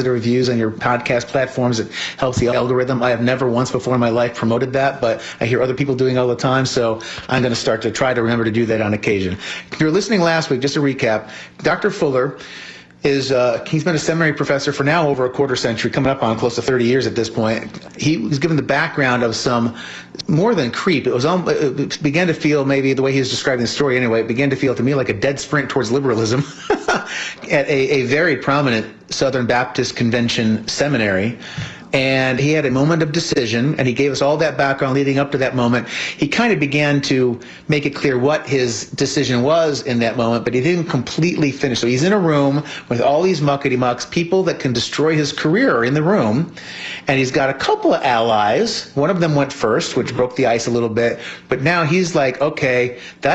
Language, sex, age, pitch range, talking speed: English, male, 30-49, 120-145 Hz, 230 wpm